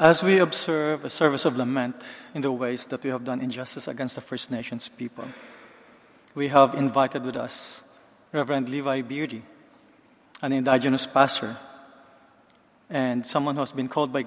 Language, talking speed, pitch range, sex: English, 160 wpm, 135-160 Hz, male